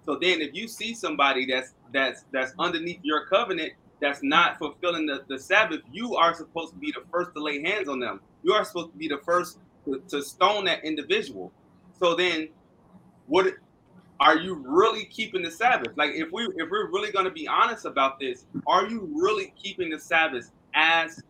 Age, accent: 30-49, American